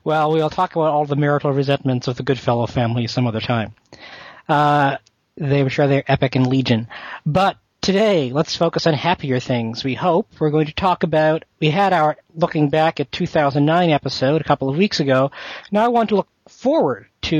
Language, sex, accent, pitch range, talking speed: English, male, American, 130-155 Hz, 195 wpm